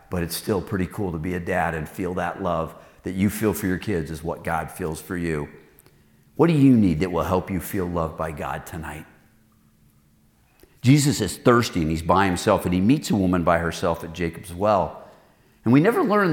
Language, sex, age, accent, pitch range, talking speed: English, male, 50-69, American, 90-120 Hz, 215 wpm